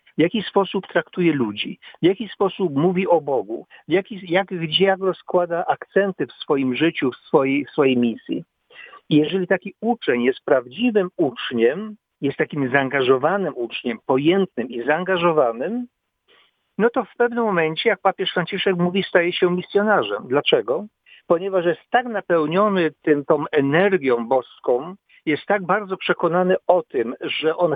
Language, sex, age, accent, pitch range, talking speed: Polish, male, 50-69, native, 150-200 Hz, 140 wpm